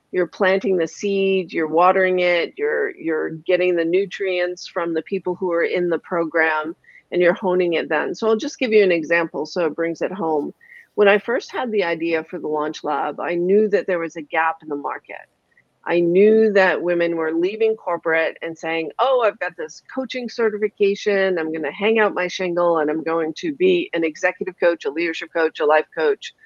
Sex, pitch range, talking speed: female, 165-205 Hz, 210 wpm